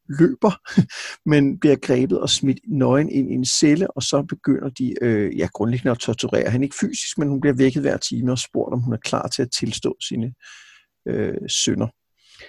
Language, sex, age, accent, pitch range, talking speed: Danish, male, 60-79, native, 130-175 Hz, 180 wpm